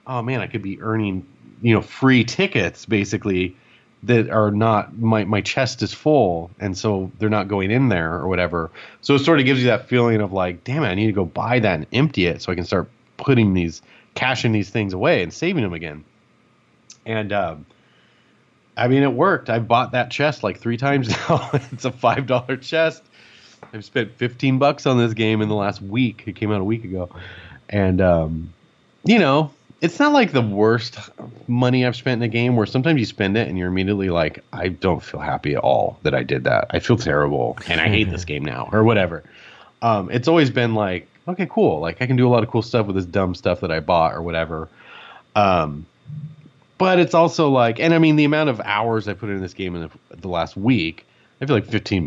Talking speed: 225 wpm